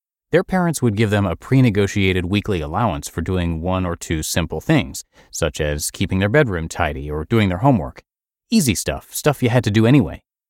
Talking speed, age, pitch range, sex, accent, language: 195 wpm, 30-49, 90-125 Hz, male, American, English